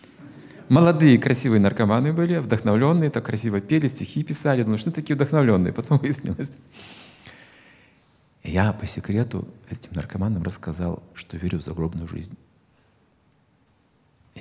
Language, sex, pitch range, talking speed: Russian, male, 90-130 Hz, 110 wpm